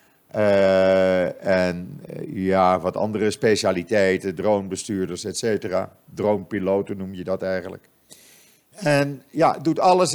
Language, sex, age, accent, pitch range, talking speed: Dutch, male, 50-69, Dutch, 95-125 Hz, 105 wpm